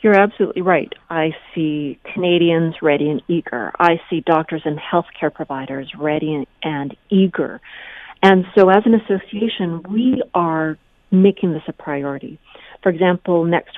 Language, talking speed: English, 140 wpm